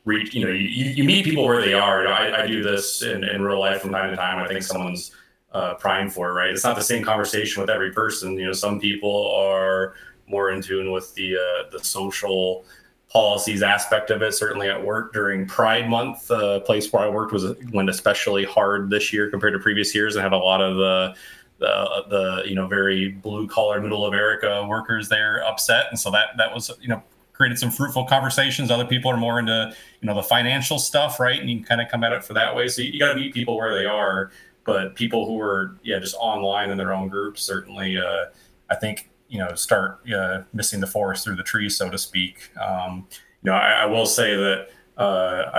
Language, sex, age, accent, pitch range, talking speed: English, male, 30-49, American, 95-110 Hz, 230 wpm